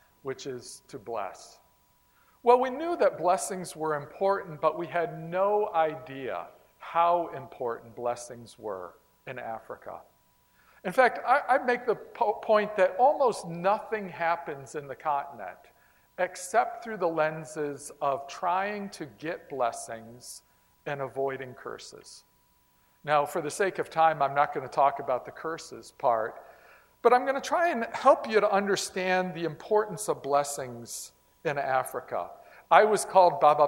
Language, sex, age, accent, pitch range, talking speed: English, male, 50-69, American, 150-195 Hz, 145 wpm